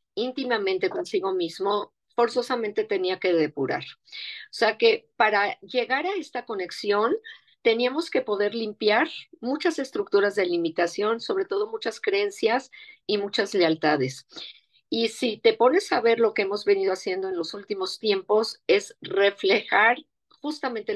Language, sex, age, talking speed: Spanish, female, 40-59, 135 wpm